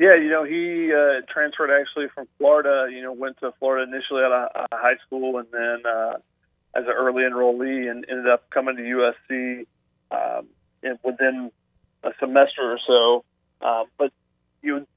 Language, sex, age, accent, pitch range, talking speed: English, male, 40-59, American, 120-140 Hz, 165 wpm